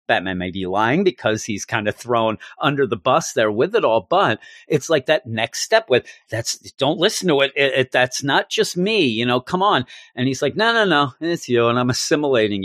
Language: English